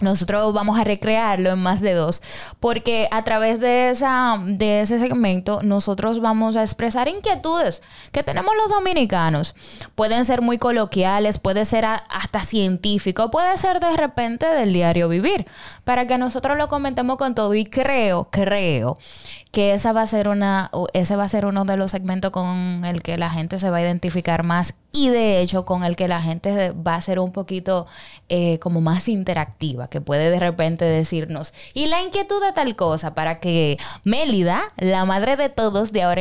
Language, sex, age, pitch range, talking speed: Spanish, female, 10-29, 180-225 Hz, 185 wpm